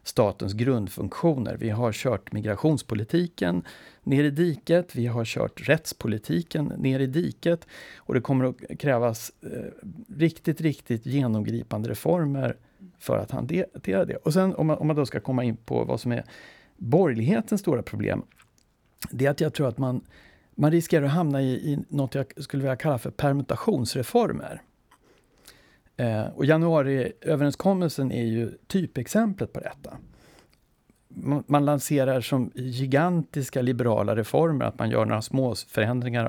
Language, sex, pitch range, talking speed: Swedish, male, 120-150 Hz, 140 wpm